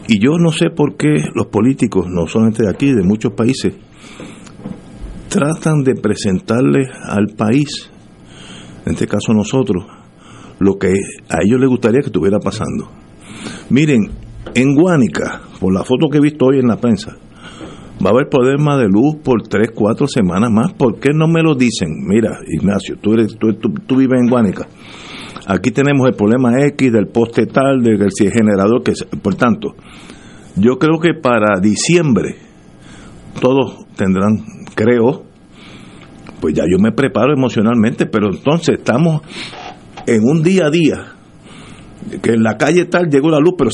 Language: Spanish